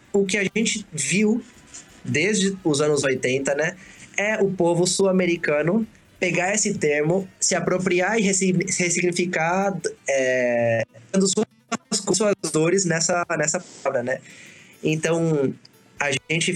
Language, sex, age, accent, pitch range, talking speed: Portuguese, male, 20-39, Brazilian, 140-180 Hz, 110 wpm